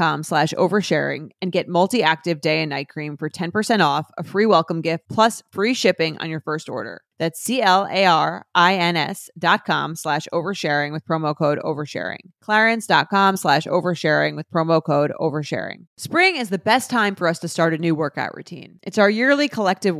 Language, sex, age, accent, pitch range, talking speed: English, female, 30-49, American, 160-205 Hz, 165 wpm